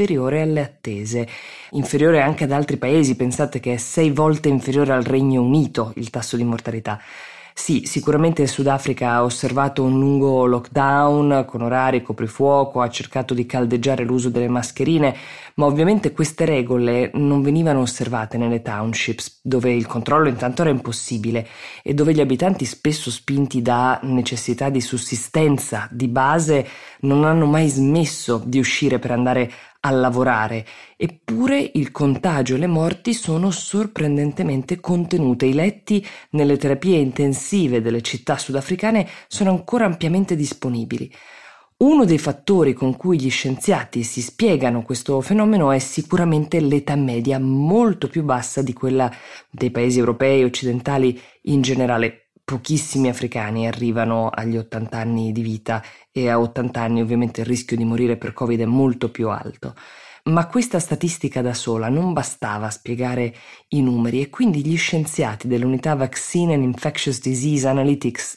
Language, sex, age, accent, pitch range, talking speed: Italian, female, 20-39, native, 120-150 Hz, 145 wpm